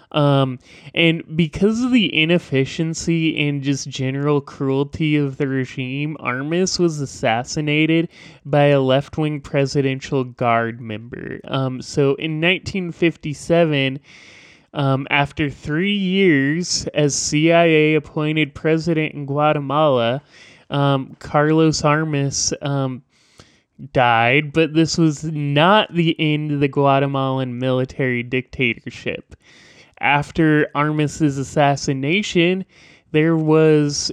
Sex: male